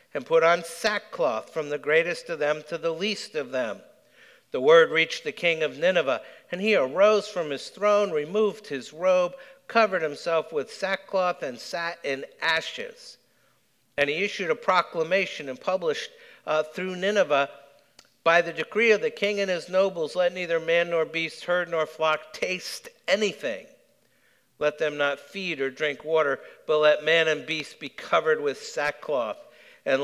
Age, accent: 50-69, American